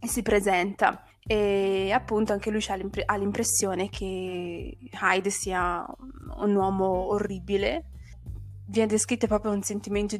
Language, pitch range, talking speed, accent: Italian, 190-215 Hz, 125 wpm, native